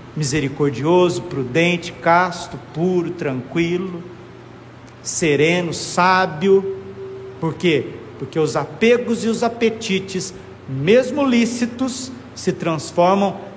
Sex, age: male, 50-69